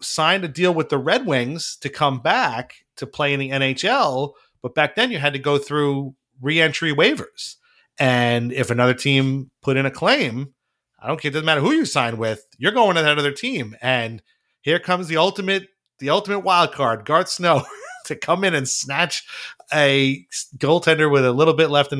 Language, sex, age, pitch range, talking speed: English, male, 30-49, 120-160 Hz, 200 wpm